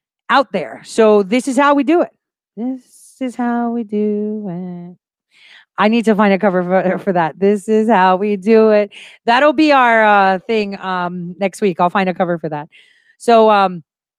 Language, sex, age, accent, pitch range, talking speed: English, female, 40-59, American, 195-275 Hz, 195 wpm